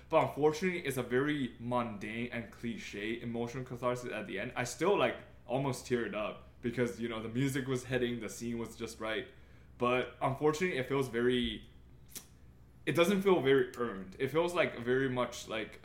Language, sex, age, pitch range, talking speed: English, male, 20-39, 115-155 Hz, 180 wpm